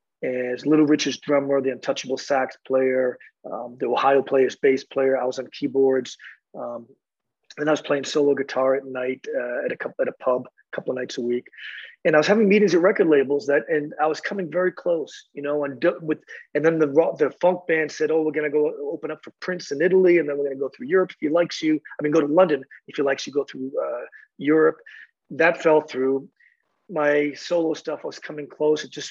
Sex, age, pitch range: male, 30-49, 135-165 Hz